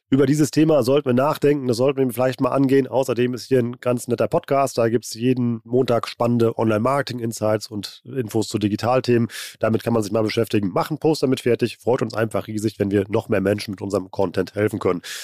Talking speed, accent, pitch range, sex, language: 215 wpm, German, 110-145 Hz, male, German